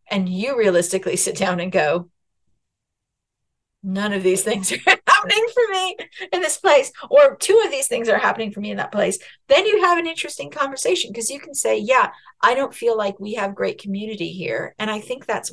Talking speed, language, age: 210 wpm, English, 40-59